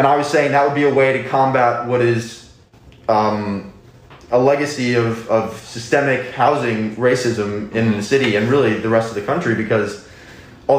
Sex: male